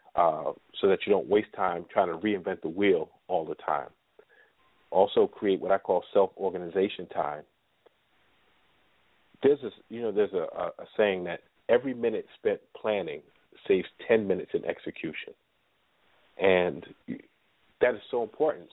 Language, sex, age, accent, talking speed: English, male, 40-59, American, 145 wpm